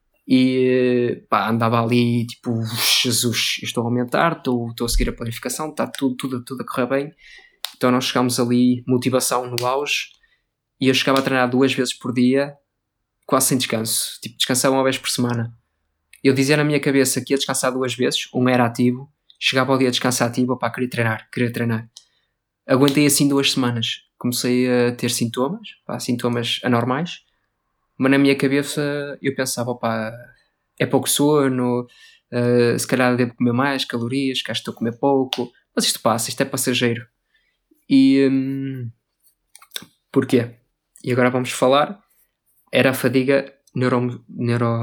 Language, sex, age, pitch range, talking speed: Portuguese, male, 20-39, 120-135 Hz, 165 wpm